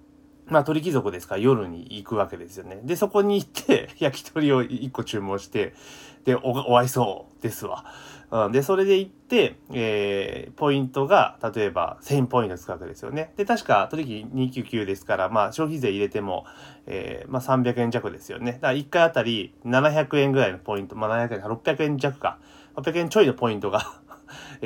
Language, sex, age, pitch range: Japanese, male, 30-49, 120-180 Hz